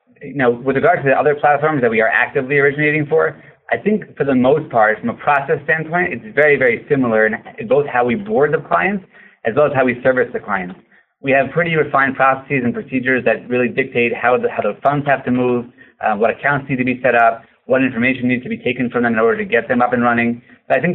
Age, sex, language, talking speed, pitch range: 30-49, male, English, 250 wpm, 120-155 Hz